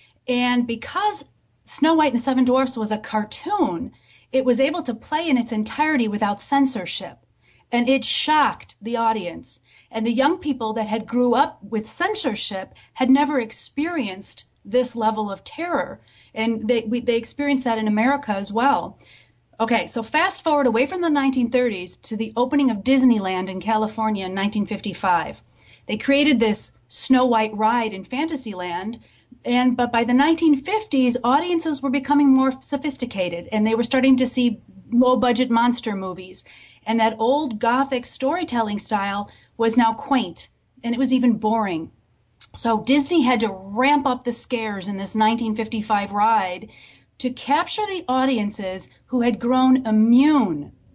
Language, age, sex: English, 40-59, female